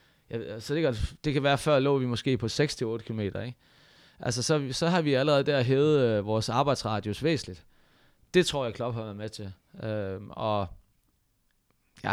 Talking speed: 185 wpm